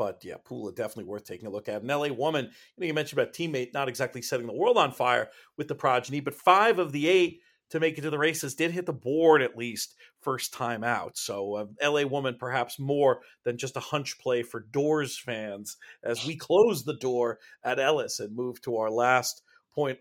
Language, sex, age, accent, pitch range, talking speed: English, male, 40-59, American, 120-145 Hz, 220 wpm